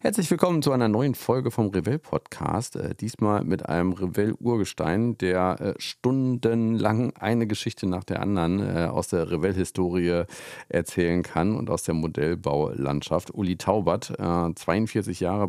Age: 50-69